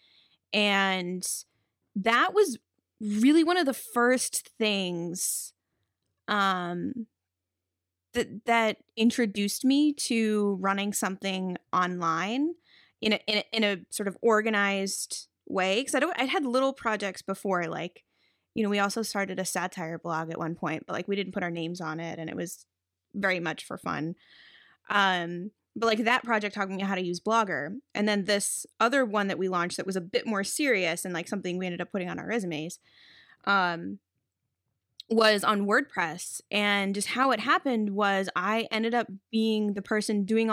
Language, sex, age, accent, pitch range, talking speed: English, female, 20-39, American, 180-220 Hz, 170 wpm